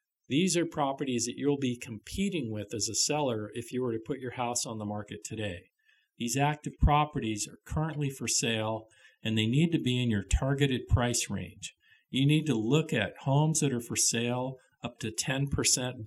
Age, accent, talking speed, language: 50-69, American, 195 wpm, English